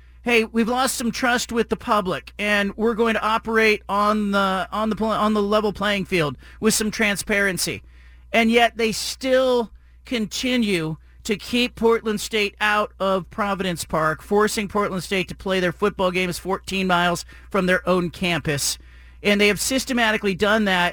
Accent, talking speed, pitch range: American, 165 wpm, 175-210 Hz